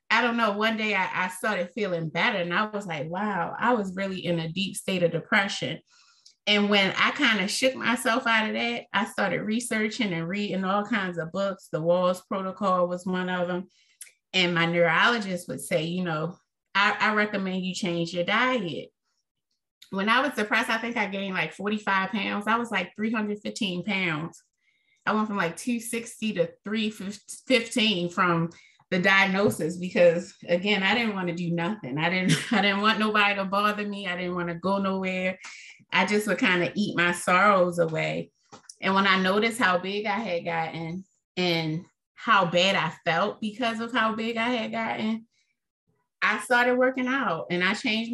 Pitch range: 180-220 Hz